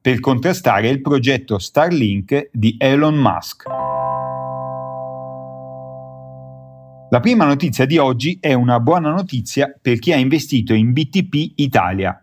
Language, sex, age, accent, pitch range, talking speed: Italian, male, 40-59, native, 110-145 Hz, 120 wpm